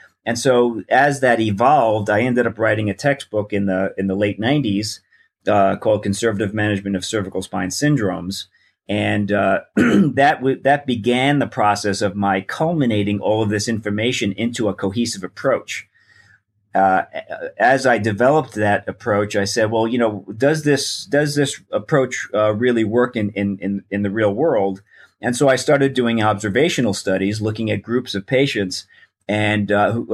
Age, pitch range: 40-59, 100-125 Hz